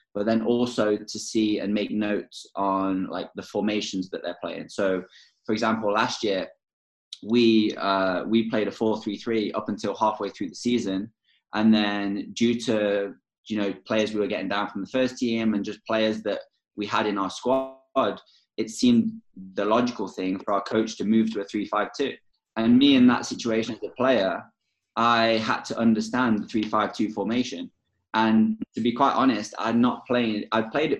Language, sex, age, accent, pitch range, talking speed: English, male, 20-39, British, 105-120 Hz, 185 wpm